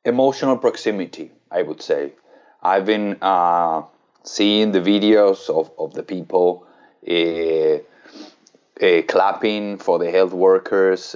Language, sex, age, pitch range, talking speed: Spanish, male, 30-49, 95-150 Hz, 120 wpm